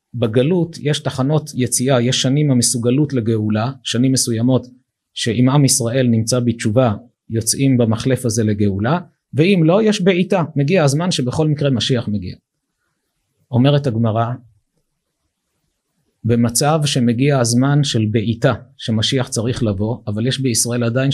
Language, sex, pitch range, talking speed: Hebrew, male, 115-145 Hz, 120 wpm